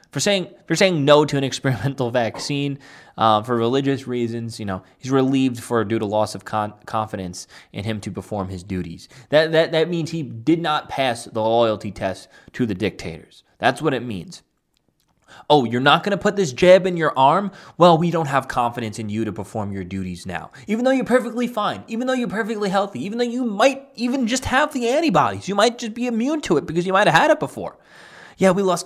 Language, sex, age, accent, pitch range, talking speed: English, male, 20-39, American, 110-175 Hz, 225 wpm